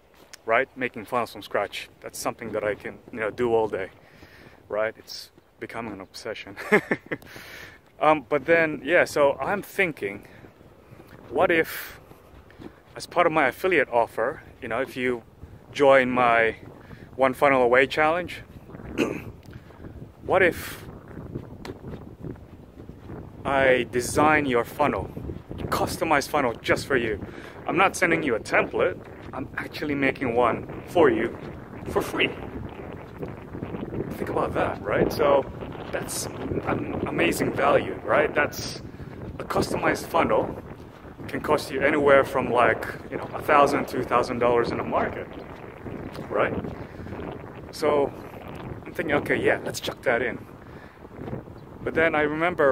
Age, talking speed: 30-49, 130 wpm